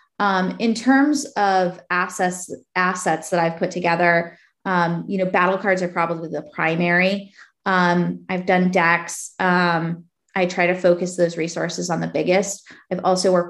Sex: female